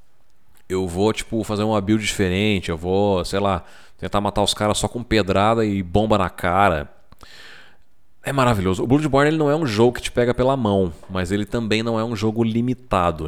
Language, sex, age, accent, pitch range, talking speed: Portuguese, male, 30-49, Brazilian, 95-120 Hz, 200 wpm